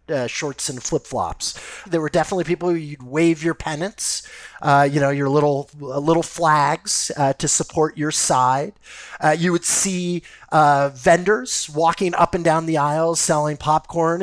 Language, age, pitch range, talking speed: English, 30-49, 135-175 Hz, 160 wpm